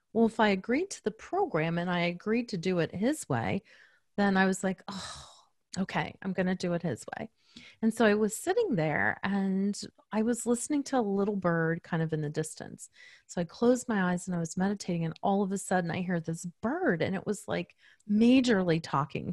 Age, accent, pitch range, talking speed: 30-49, American, 170-215 Hz, 220 wpm